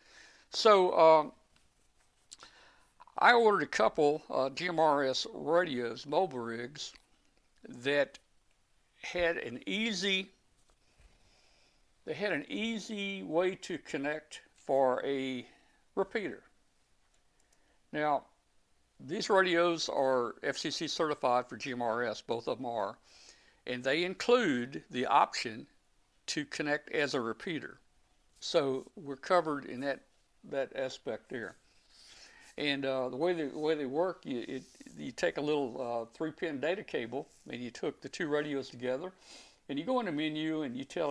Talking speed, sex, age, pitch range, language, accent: 130 wpm, male, 60-79, 130-170 Hz, English, American